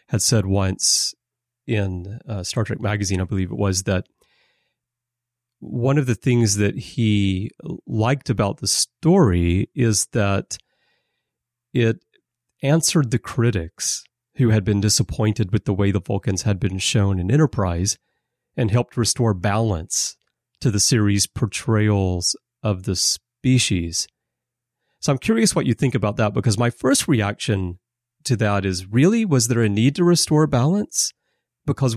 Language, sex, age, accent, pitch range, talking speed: English, male, 30-49, American, 95-120 Hz, 145 wpm